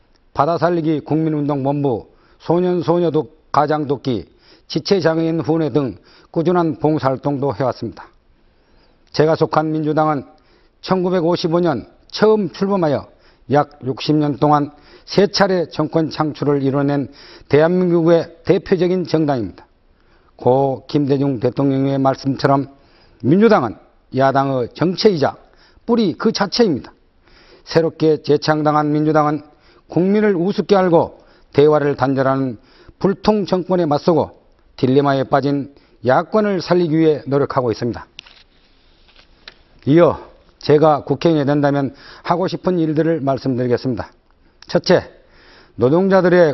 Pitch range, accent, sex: 135-170 Hz, native, male